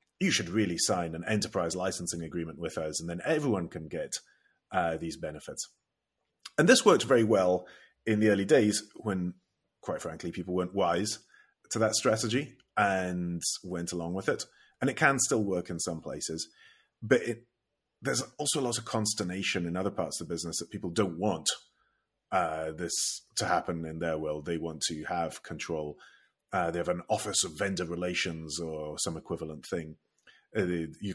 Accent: British